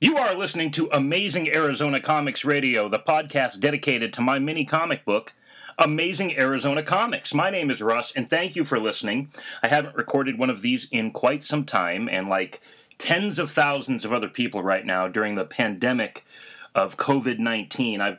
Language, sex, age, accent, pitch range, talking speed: English, male, 30-49, American, 110-145 Hz, 180 wpm